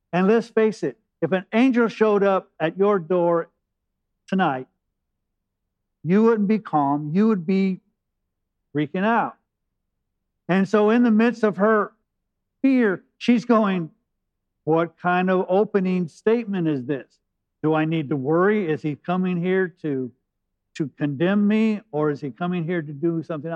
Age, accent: 50-69, American